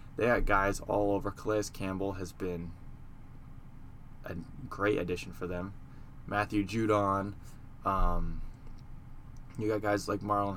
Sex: male